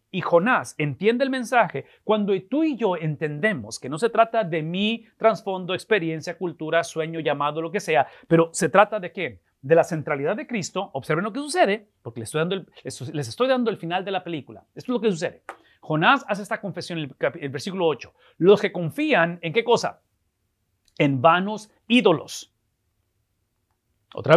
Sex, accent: male, Mexican